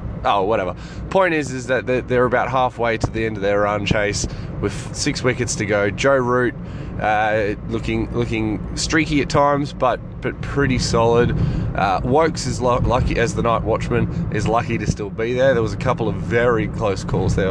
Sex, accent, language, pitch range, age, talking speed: male, Australian, English, 110-140 Hz, 20-39, 195 wpm